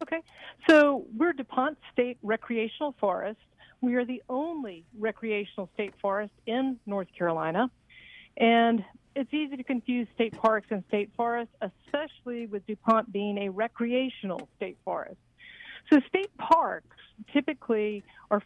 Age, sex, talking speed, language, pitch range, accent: 50-69, female, 130 wpm, English, 200-250 Hz, American